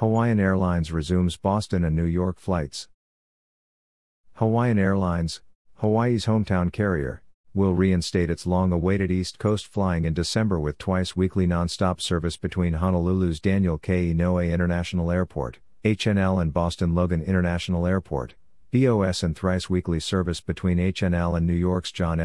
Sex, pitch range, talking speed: male, 85-95 Hz, 130 wpm